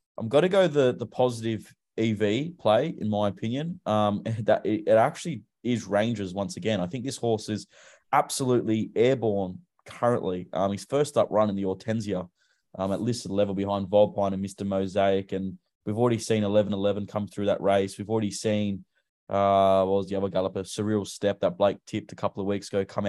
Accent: Australian